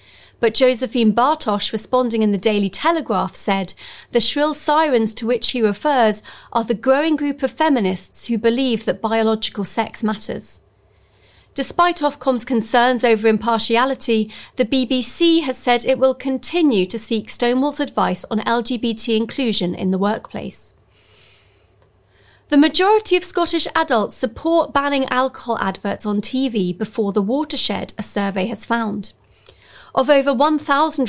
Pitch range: 210-270 Hz